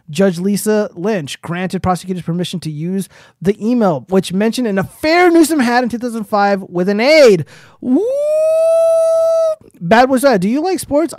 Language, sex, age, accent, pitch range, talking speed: English, male, 30-49, American, 175-225 Hz, 155 wpm